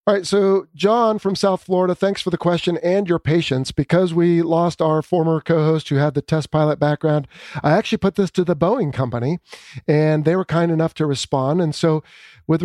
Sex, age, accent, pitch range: male, 40-59, American, 140-175 Hz